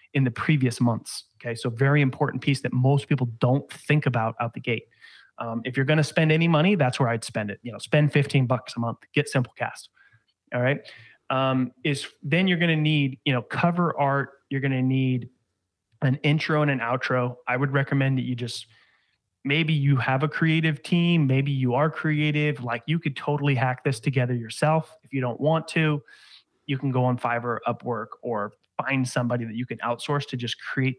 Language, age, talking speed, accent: English, 30-49, 205 wpm, American